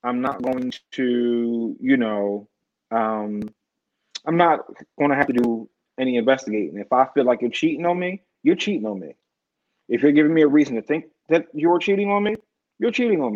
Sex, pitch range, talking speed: male, 120-165 Hz, 200 wpm